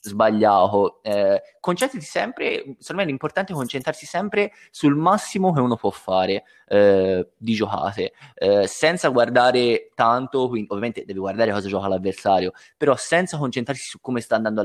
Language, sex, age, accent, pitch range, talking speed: Italian, male, 20-39, native, 100-125 Hz, 150 wpm